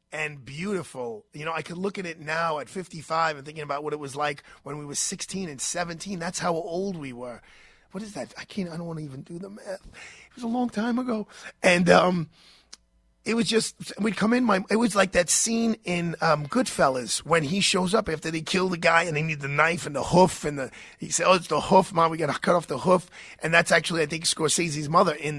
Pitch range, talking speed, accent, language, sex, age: 155-190 Hz, 250 wpm, American, English, male, 30-49